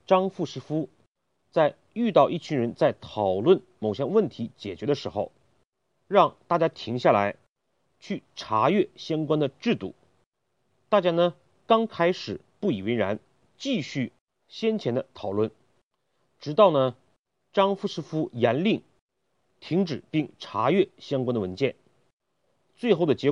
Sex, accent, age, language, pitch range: male, native, 40-59, Chinese, 125-195 Hz